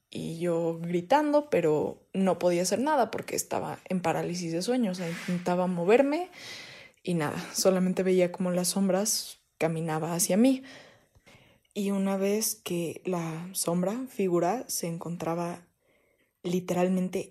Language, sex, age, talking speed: Spanish, female, 20-39, 130 wpm